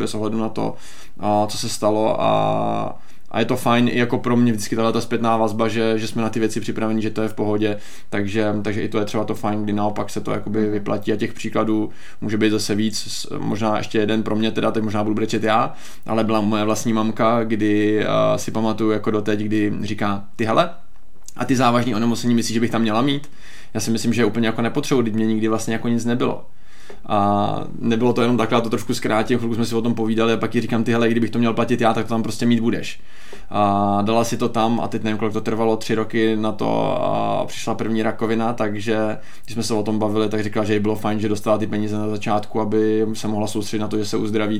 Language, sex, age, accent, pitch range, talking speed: Czech, male, 20-39, native, 105-115 Hz, 240 wpm